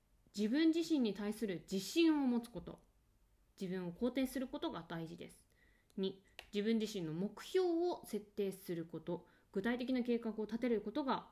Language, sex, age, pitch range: Japanese, female, 20-39, 170-250 Hz